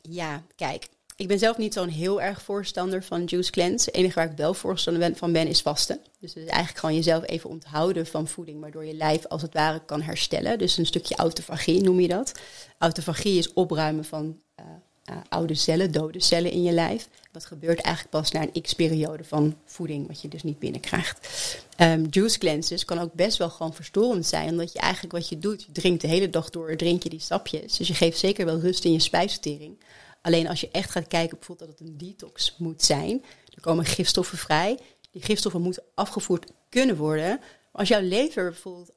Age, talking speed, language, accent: 30-49, 215 wpm, Dutch, Dutch